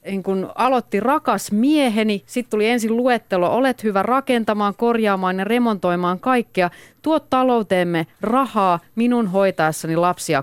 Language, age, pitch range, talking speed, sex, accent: Finnish, 30-49, 145-205 Hz, 125 wpm, female, native